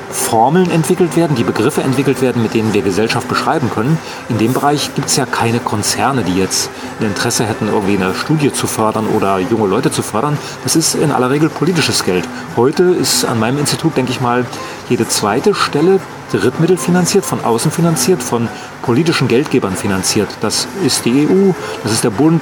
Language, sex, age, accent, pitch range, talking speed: German, male, 40-59, German, 115-160 Hz, 190 wpm